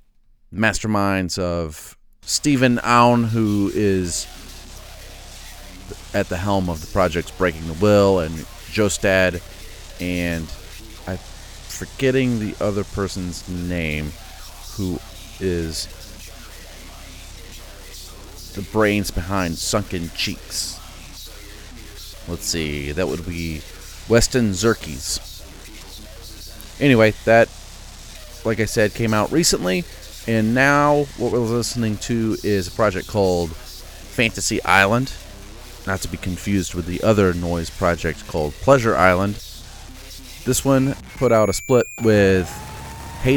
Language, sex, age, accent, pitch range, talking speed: English, male, 30-49, American, 85-105 Hz, 110 wpm